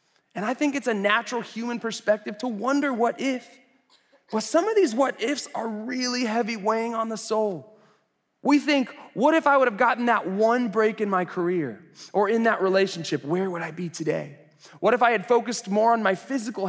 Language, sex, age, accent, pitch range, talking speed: English, male, 20-39, American, 145-220 Hz, 205 wpm